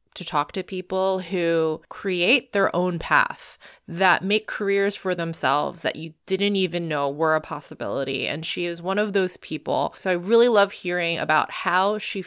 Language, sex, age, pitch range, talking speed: English, female, 20-39, 160-205 Hz, 180 wpm